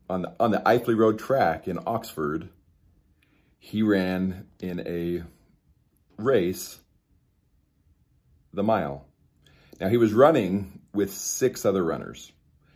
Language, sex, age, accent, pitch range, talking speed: English, male, 40-59, American, 75-95 Hz, 110 wpm